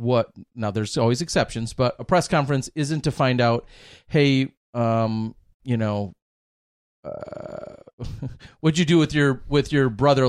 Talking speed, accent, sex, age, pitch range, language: 150 wpm, American, male, 40-59, 110-135 Hz, English